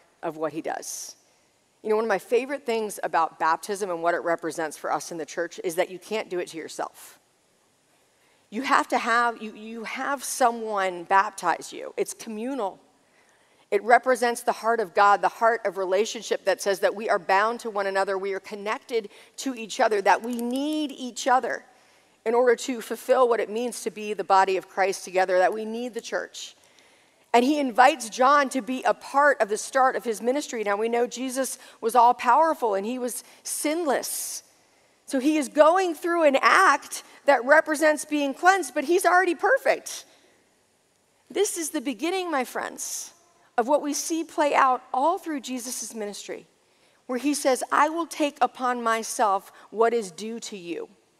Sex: female